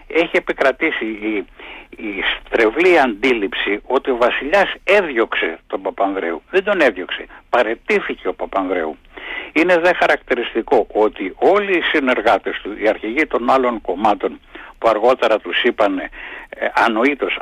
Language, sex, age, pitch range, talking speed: Greek, male, 60-79, 125-200 Hz, 125 wpm